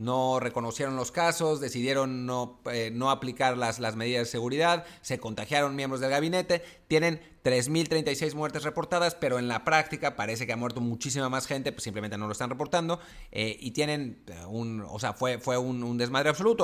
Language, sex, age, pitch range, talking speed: English, male, 30-49, 115-150 Hz, 190 wpm